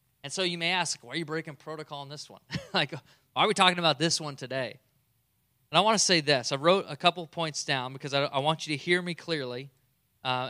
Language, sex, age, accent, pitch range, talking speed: English, male, 20-39, American, 130-155 Hz, 250 wpm